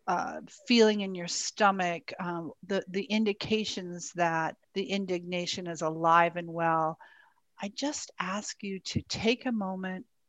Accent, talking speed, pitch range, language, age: American, 140 wpm, 175-225 Hz, English, 50-69